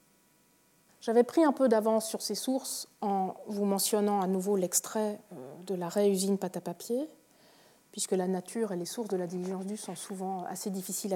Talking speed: 175 wpm